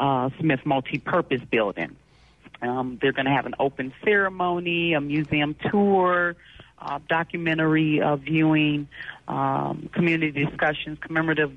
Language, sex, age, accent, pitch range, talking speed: English, female, 40-59, American, 135-165 Hz, 120 wpm